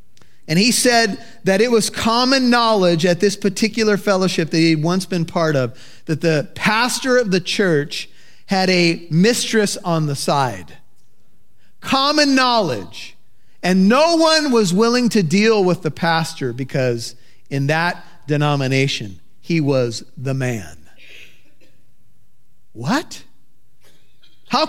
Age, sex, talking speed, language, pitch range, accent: 40-59, male, 125 wpm, English, 150-225 Hz, American